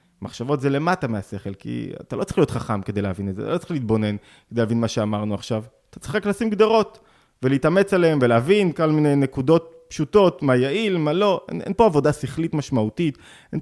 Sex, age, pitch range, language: male, 30-49, 110-165 Hz, Hebrew